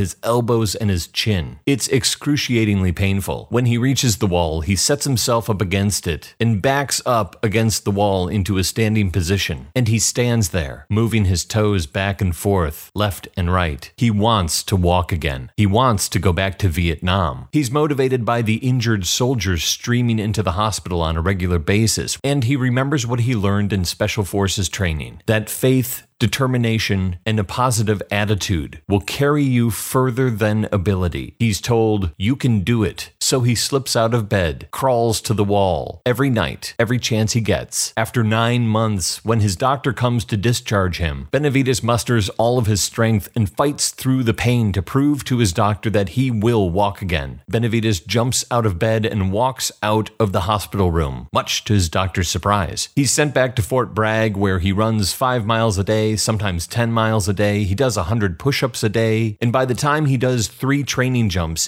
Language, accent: English, American